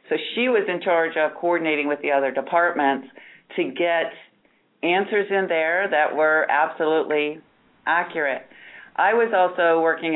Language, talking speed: English, 140 wpm